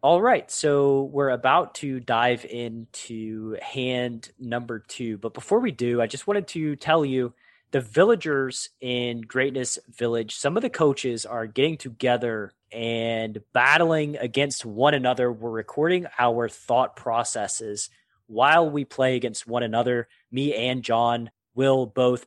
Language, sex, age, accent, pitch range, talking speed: English, male, 20-39, American, 120-145 Hz, 145 wpm